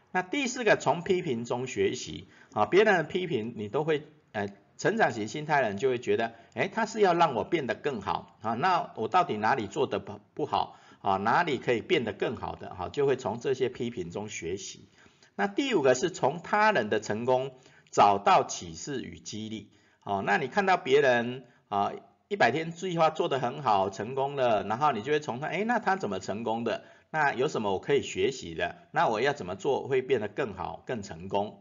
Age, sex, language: 50-69, male, Chinese